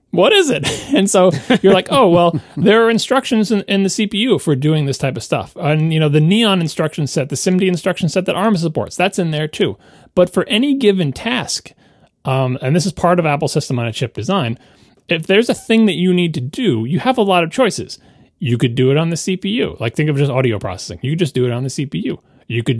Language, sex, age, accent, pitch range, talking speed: English, male, 30-49, American, 135-180 Hz, 250 wpm